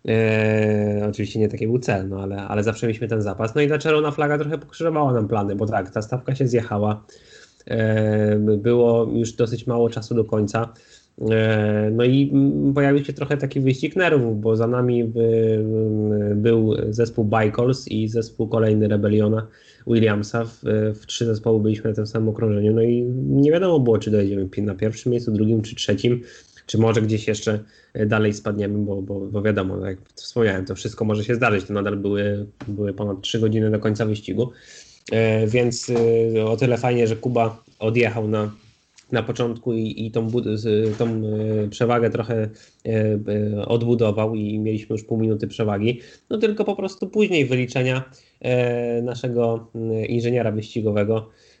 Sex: male